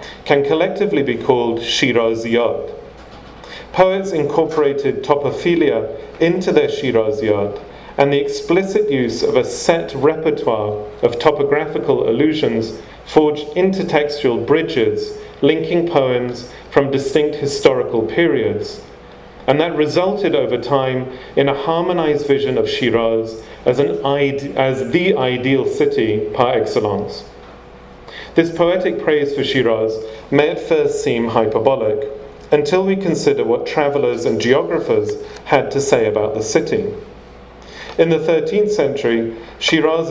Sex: male